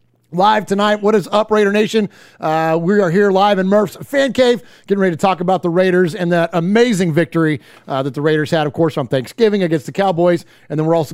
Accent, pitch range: American, 165-215 Hz